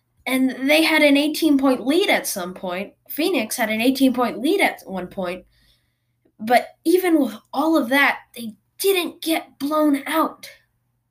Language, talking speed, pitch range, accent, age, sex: English, 160 wpm, 200-315 Hz, American, 10-29, female